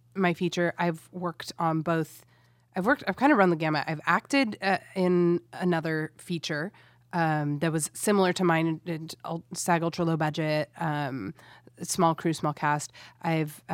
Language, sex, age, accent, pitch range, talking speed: English, female, 20-39, American, 150-180 Hz, 160 wpm